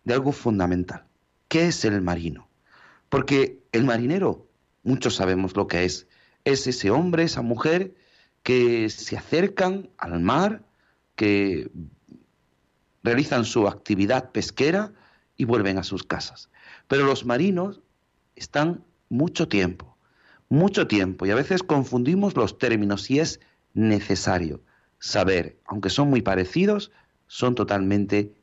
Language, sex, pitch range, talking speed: Spanish, male, 95-150 Hz, 125 wpm